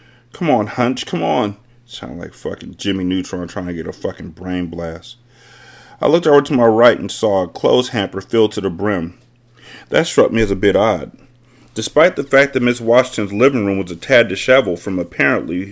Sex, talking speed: male, 200 wpm